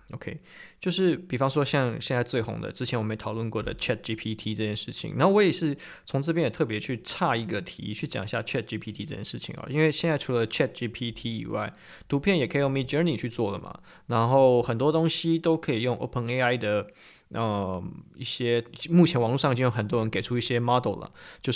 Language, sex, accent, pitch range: Chinese, male, native, 115-155 Hz